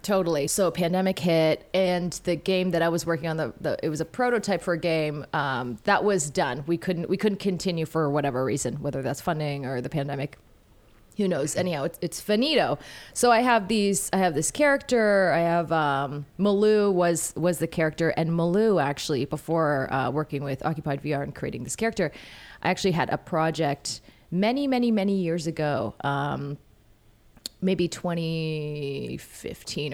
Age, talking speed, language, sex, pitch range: 30-49, 175 wpm, English, female, 150-185 Hz